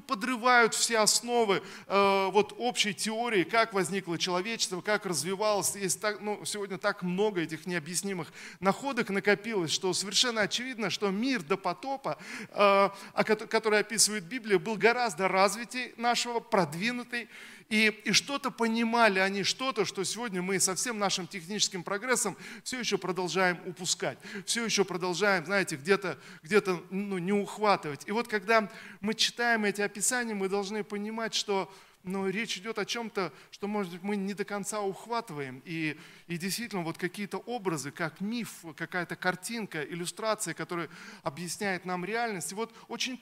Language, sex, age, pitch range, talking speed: Russian, male, 40-59, 190-225 Hz, 145 wpm